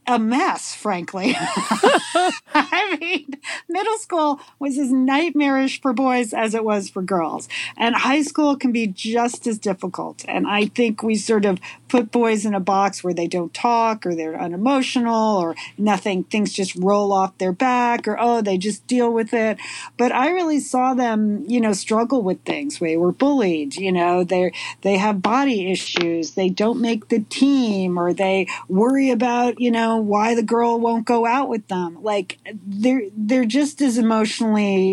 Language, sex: English, female